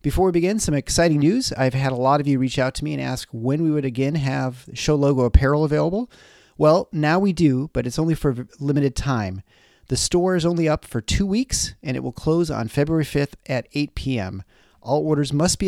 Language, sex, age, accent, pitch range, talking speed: English, male, 30-49, American, 120-155 Hz, 230 wpm